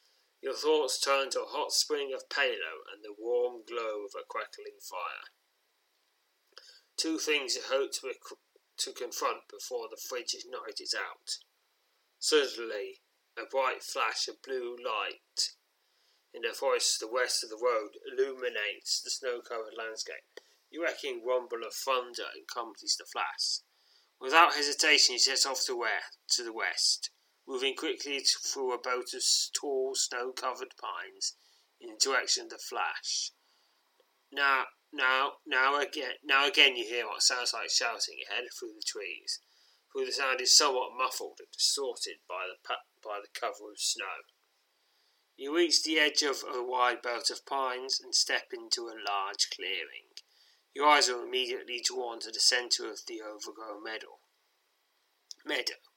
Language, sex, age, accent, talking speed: English, male, 30-49, British, 155 wpm